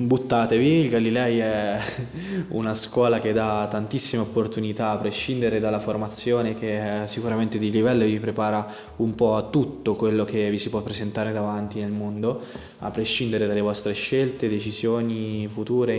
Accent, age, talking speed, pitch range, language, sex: native, 20-39, 150 wpm, 105-115 Hz, Italian, male